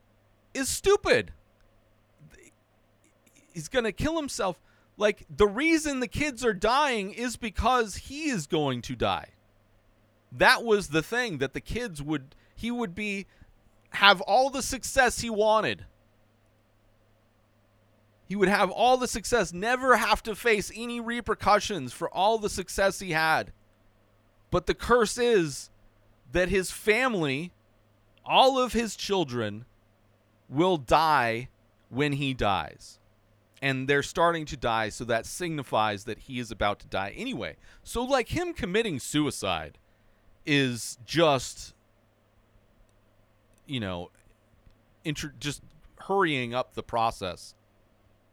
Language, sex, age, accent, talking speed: English, male, 30-49, American, 125 wpm